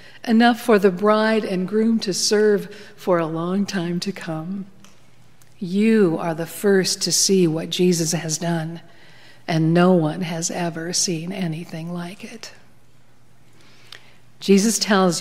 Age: 60-79